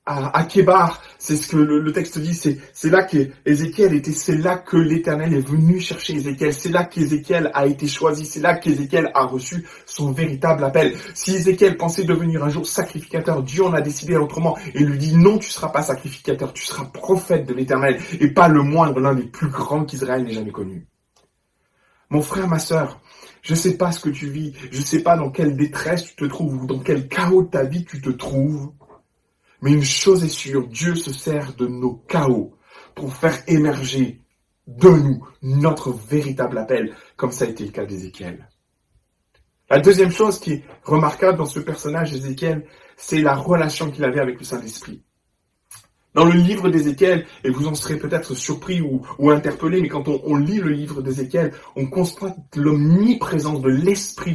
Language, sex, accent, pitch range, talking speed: French, male, French, 140-175 Hz, 195 wpm